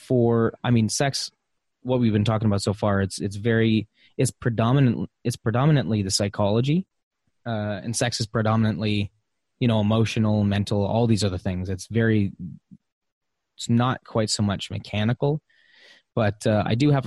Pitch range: 100-115 Hz